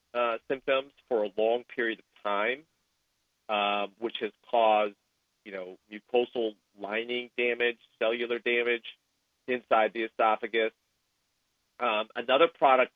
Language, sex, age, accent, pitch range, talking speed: English, male, 40-59, American, 105-120 Hz, 115 wpm